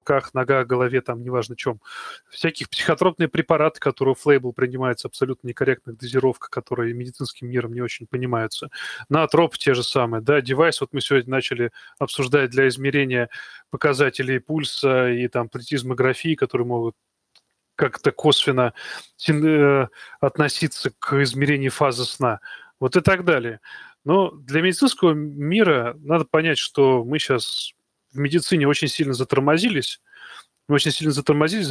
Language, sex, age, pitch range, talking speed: Russian, male, 20-39, 125-155 Hz, 130 wpm